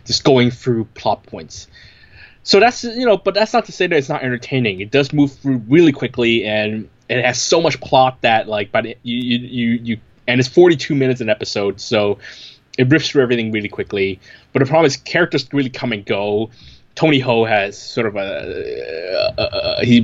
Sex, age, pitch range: male, 20-39, 110-135 Hz